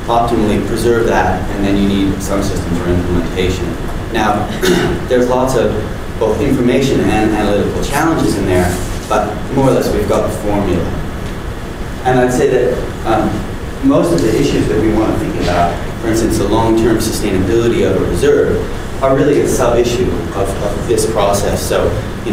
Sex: male